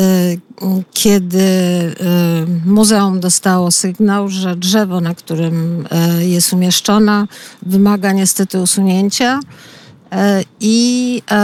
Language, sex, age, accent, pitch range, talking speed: Polish, female, 50-69, native, 180-210 Hz, 75 wpm